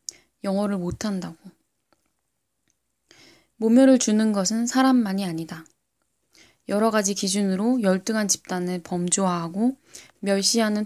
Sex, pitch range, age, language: female, 185-245 Hz, 10-29, Korean